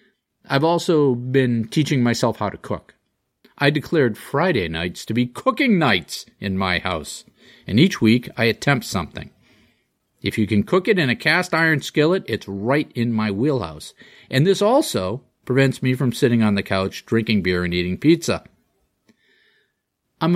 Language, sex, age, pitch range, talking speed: English, male, 40-59, 105-160 Hz, 165 wpm